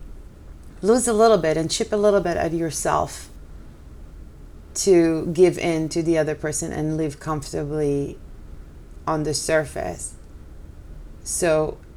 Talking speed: 125 wpm